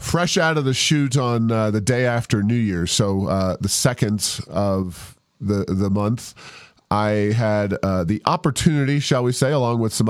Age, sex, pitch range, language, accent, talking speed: 40-59, male, 105-125 Hz, English, American, 185 wpm